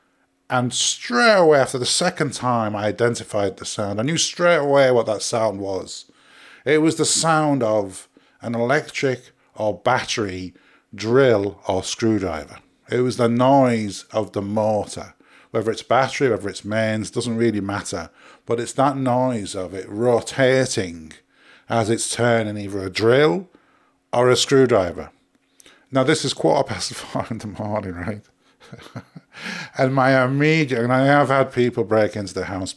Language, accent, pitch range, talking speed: English, British, 95-130 Hz, 155 wpm